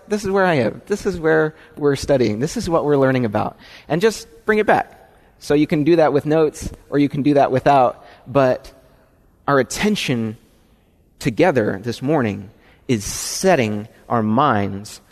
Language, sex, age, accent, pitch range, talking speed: English, male, 30-49, American, 110-160 Hz, 175 wpm